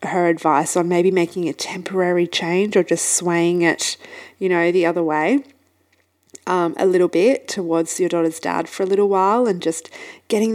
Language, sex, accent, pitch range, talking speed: English, female, Australian, 170-210 Hz, 180 wpm